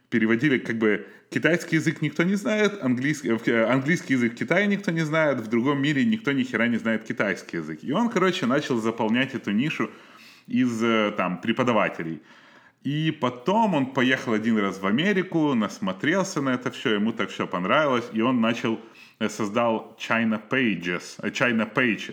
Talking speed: 160 wpm